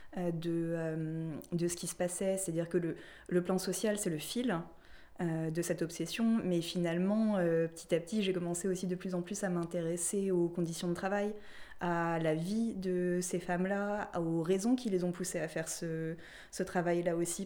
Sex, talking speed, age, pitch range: female, 195 wpm, 20-39, 170-195 Hz